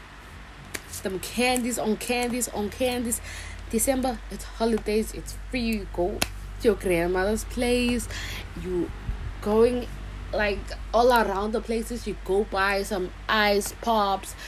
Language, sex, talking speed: English, female, 125 wpm